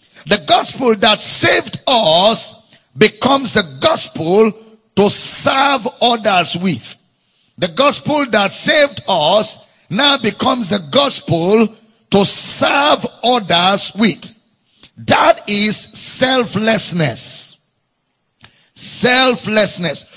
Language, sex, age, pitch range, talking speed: English, male, 50-69, 175-240 Hz, 85 wpm